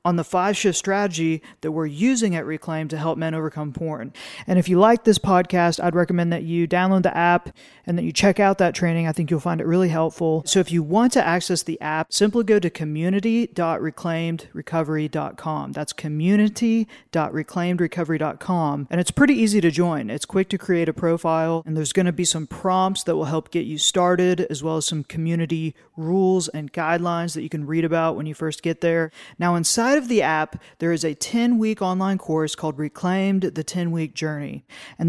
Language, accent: English, American